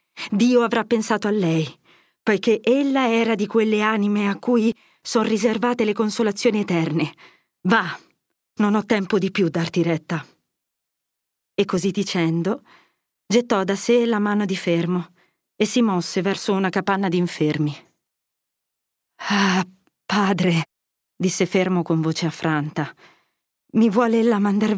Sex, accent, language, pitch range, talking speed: female, native, Italian, 180-245 Hz, 135 wpm